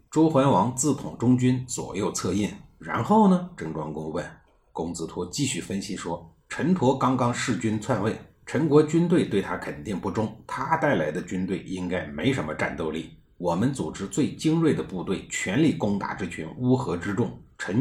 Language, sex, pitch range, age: Chinese, male, 95-155 Hz, 50-69